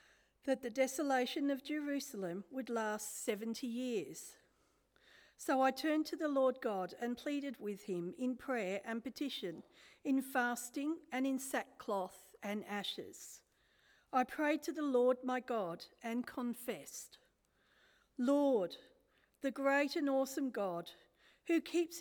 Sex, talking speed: female, 130 wpm